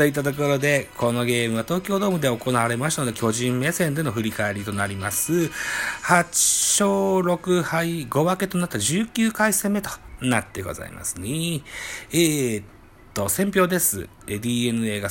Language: Japanese